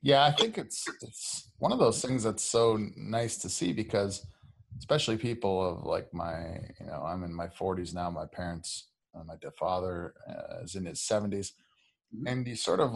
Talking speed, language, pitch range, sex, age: 180 wpm, English, 95-110 Hz, male, 30-49